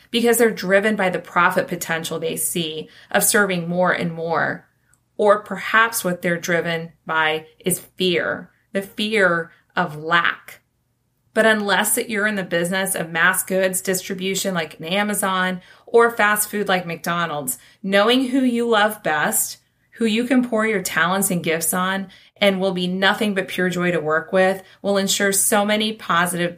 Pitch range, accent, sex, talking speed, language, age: 165-205 Hz, American, female, 165 wpm, English, 30-49